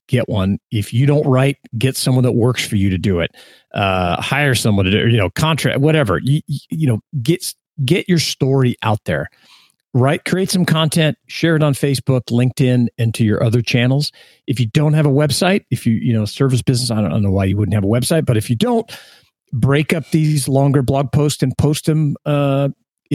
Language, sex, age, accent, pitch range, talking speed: English, male, 40-59, American, 115-155 Hz, 220 wpm